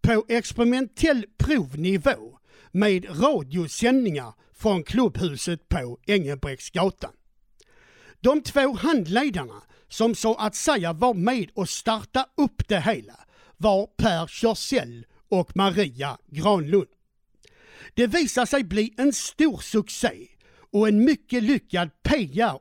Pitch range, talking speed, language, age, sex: 180-250 Hz, 110 wpm, Swedish, 60-79, male